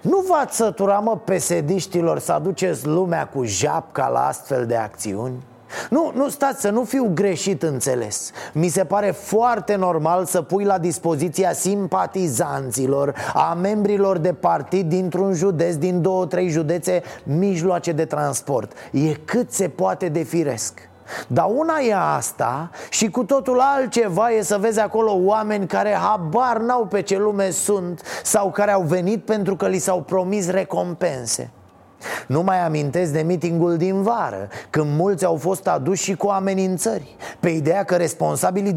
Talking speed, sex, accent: 155 wpm, male, native